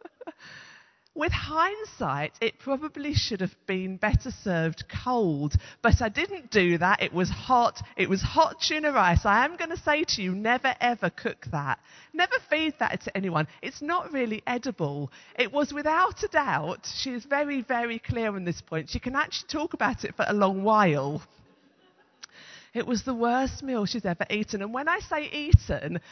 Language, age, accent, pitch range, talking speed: English, 40-59, British, 155-255 Hz, 180 wpm